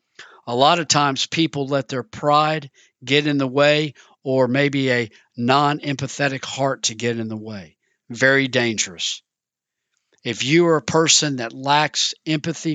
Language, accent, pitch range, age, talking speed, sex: English, American, 120-150 Hz, 50-69, 150 wpm, male